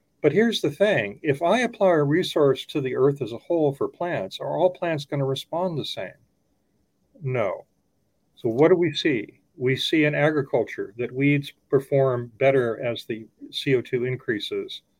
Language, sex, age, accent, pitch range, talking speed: English, male, 40-59, American, 125-165 Hz, 170 wpm